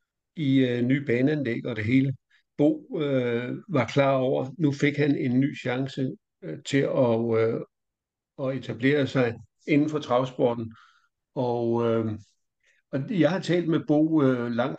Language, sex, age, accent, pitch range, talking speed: Danish, male, 60-79, native, 120-150 Hz, 150 wpm